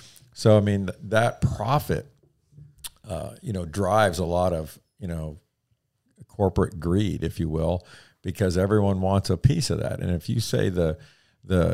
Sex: male